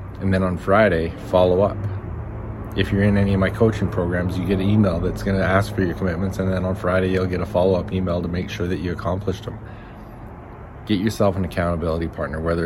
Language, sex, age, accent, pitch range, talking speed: English, male, 20-39, American, 85-100 Hz, 230 wpm